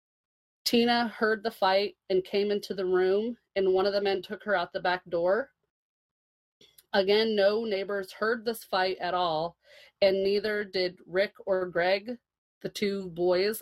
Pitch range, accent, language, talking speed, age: 180-210 Hz, American, English, 165 wpm, 30-49